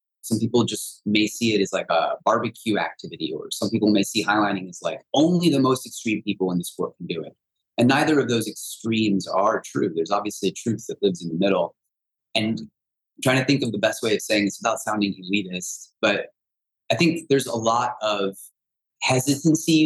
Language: English